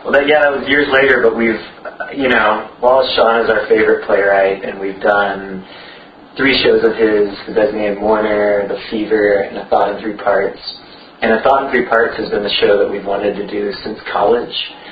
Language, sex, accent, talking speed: English, male, American, 210 wpm